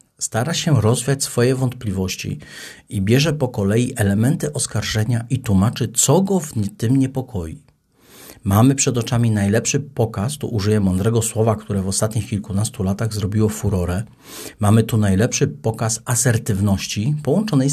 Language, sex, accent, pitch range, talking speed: Polish, male, native, 110-140 Hz, 135 wpm